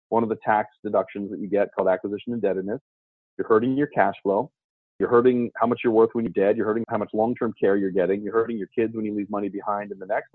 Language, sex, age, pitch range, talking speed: English, male, 30-49, 105-130 Hz, 260 wpm